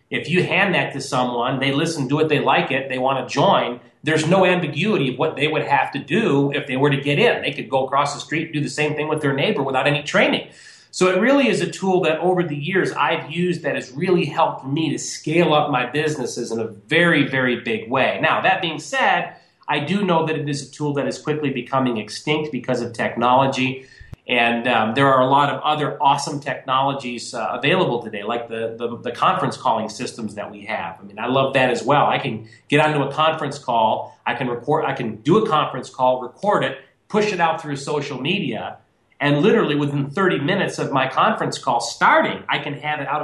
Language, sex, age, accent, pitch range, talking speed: English, male, 30-49, American, 130-160 Hz, 230 wpm